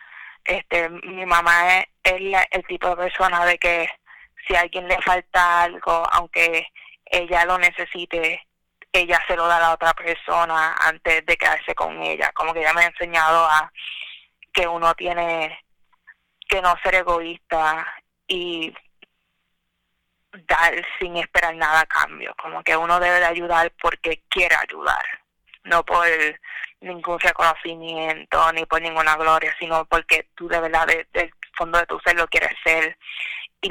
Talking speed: 155 wpm